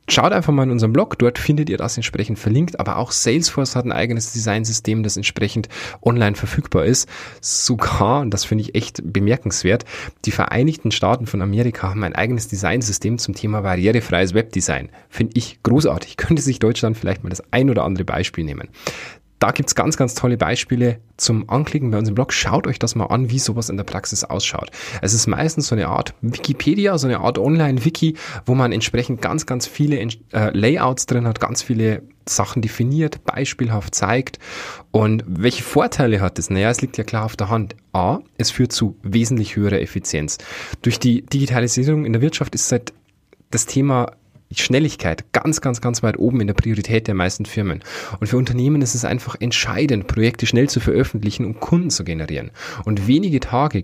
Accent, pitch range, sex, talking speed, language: German, 105-125 Hz, male, 190 wpm, German